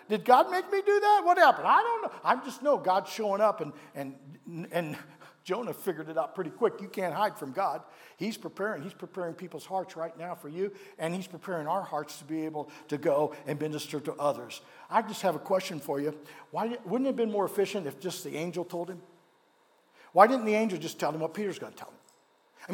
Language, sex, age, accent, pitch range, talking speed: English, male, 50-69, American, 165-245 Hz, 235 wpm